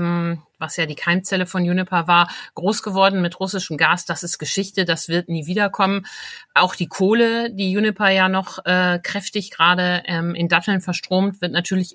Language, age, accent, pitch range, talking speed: German, 50-69, German, 165-190 Hz, 175 wpm